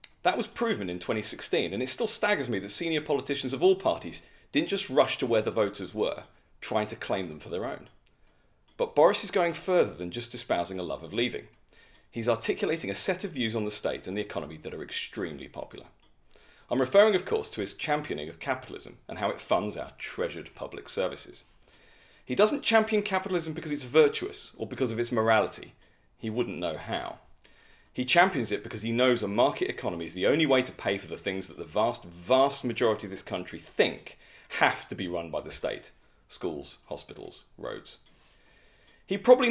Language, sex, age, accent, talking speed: English, male, 40-59, British, 200 wpm